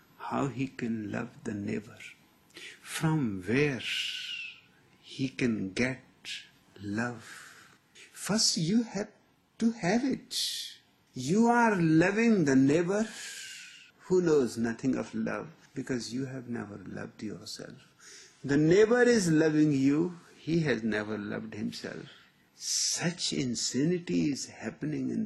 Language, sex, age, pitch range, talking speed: Persian, male, 60-79, 130-215 Hz, 115 wpm